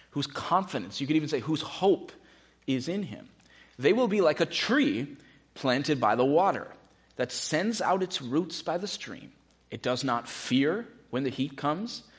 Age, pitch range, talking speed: 30-49, 115-145 Hz, 180 wpm